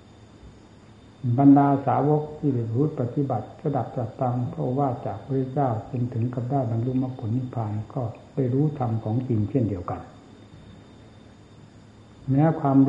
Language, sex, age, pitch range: Thai, male, 60-79, 110-135 Hz